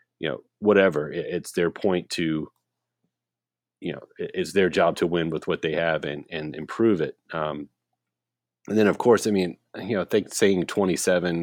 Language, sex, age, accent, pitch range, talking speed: English, male, 30-49, American, 75-100 Hz, 190 wpm